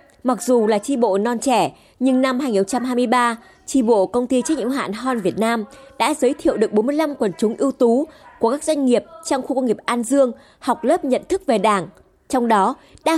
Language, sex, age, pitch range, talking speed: Vietnamese, female, 20-39, 220-285 Hz, 225 wpm